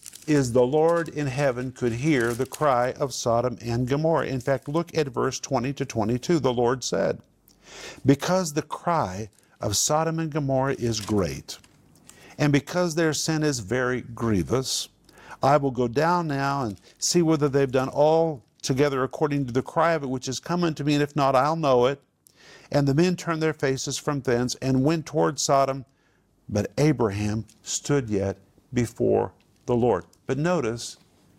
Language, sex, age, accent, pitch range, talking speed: English, male, 50-69, American, 110-150 Hz, 170 wpm